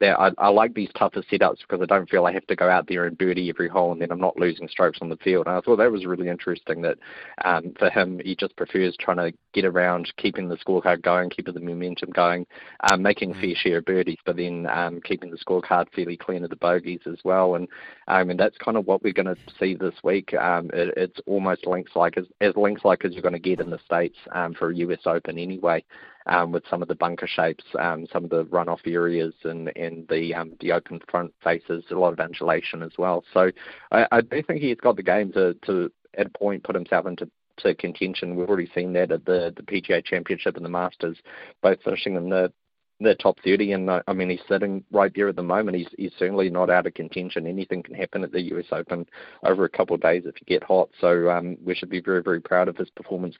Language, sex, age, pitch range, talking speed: English, male, 30-49, 85-95 Hz, 245 wpm